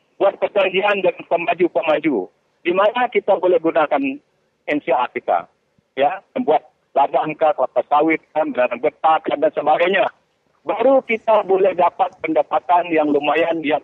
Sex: male